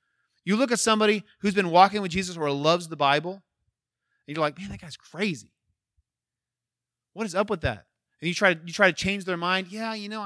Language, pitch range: English, 135-205 Hz